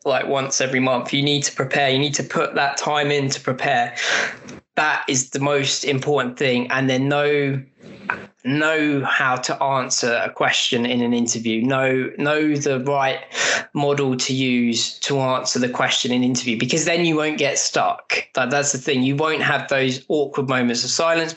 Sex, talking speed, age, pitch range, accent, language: male, 185 wpm, 20-39, 125-150 Hz, British, English